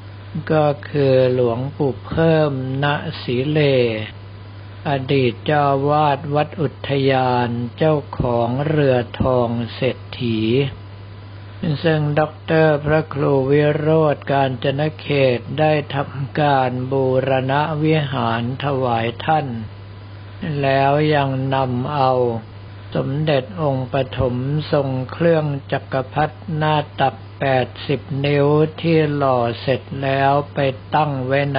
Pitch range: 115-145 Hz